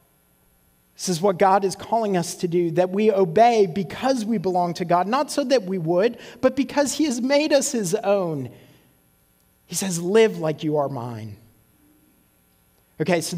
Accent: American